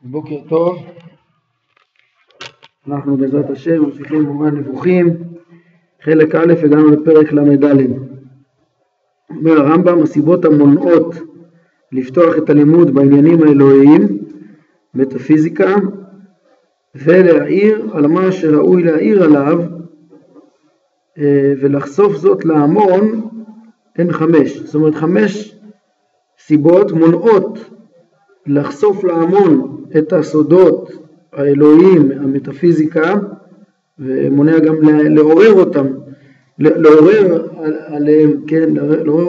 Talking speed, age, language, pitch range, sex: 85 wpm, 50-69, Hebrew, 150-185 Hz, male